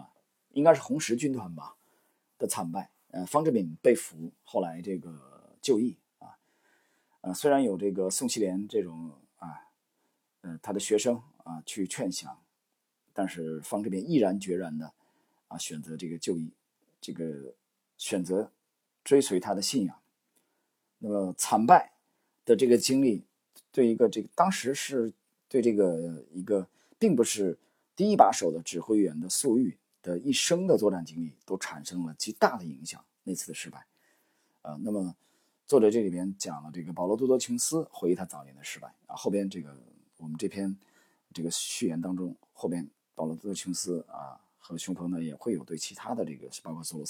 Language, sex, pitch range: Chinese, male, 80-105 Hz